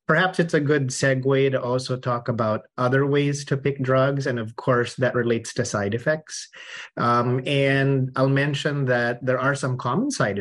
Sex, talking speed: male, 185 wpm